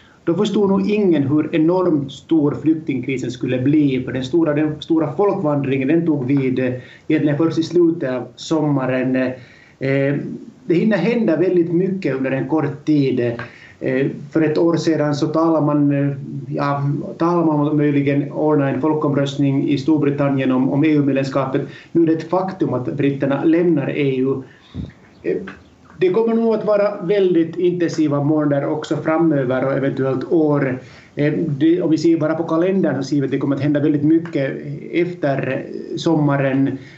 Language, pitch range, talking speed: Swedish, 135-160 Hz, 150 wpm